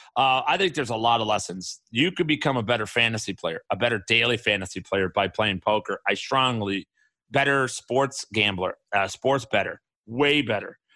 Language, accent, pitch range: English, American, 110-145 Hz